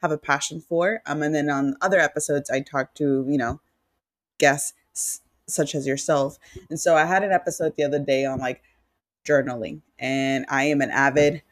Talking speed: 190 wpm